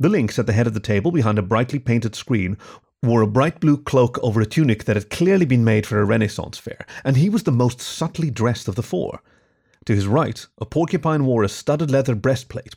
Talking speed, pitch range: 235 wpm, 110-145 Hz